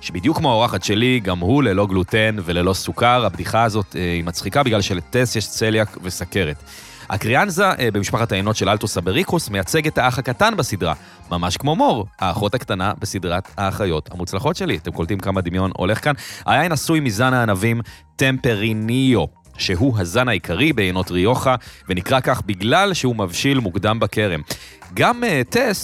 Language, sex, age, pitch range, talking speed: Hebrew, male, 30-49, 95-125 Hz, 150 wpm